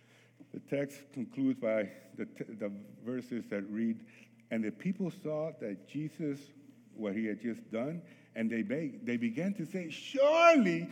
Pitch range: 125-185 Hz